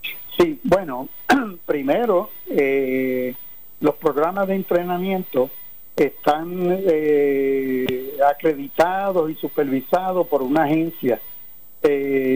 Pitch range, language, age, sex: 140-170 Hz, Spanish, 60-79, male